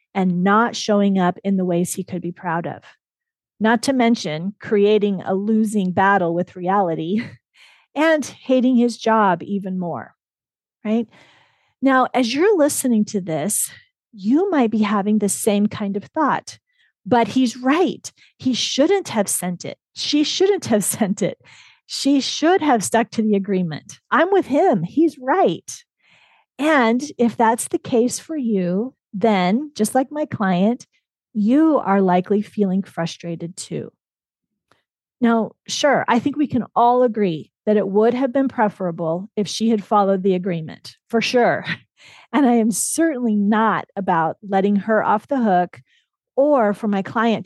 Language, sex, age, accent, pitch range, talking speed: English, female, 40-59, American, 195-255 Hz, 155 wpm